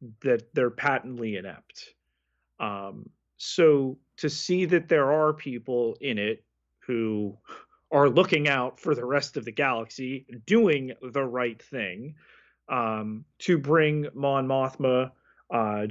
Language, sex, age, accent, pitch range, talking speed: English, male, 30-49, American, 110-150 Hz, 130 wpm